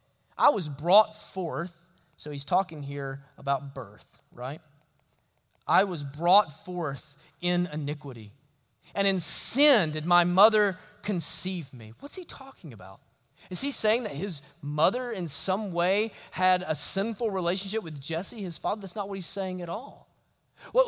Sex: male